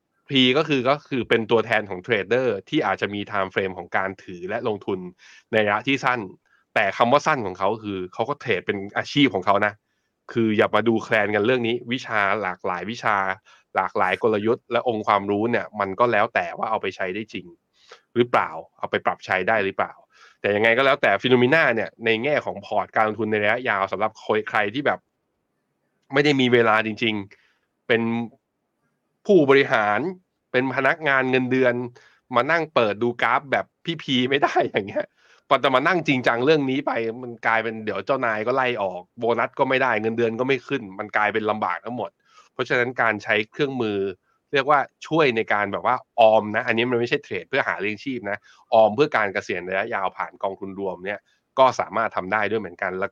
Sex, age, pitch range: male, 20-39, 105-130 Hz